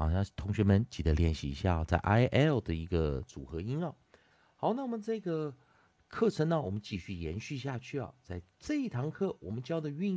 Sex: male